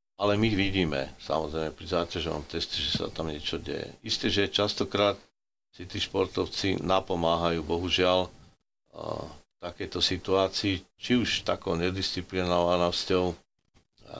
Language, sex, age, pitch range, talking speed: Slovak, male, 50-69, 85-95 Hz, 125 wpm